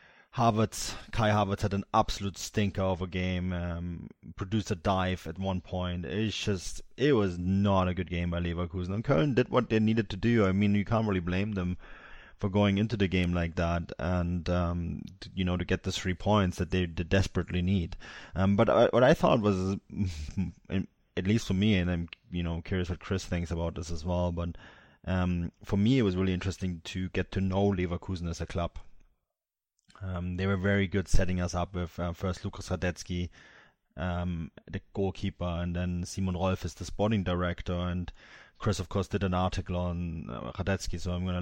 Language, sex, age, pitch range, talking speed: English, male, 20-39, 90-100 Hz, 205 wpm